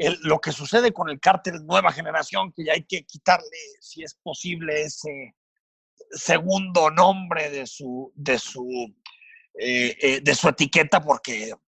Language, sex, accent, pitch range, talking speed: Spanish, male, Mexican, 140-195 Hz, 125 wpm